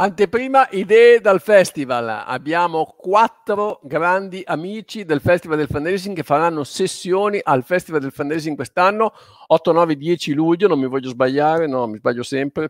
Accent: native